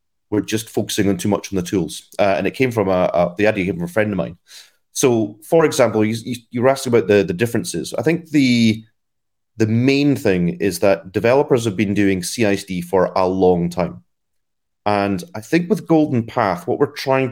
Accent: British